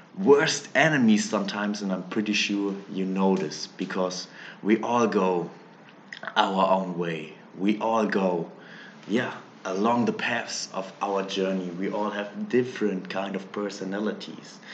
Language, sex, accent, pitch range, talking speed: German, male, German, 95-110 Hz, 140 wpm